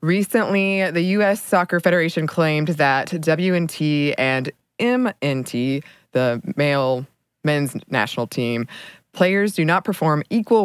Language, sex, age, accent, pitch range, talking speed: English, female, 20-39, American, 140-185 Hz, 115 wpm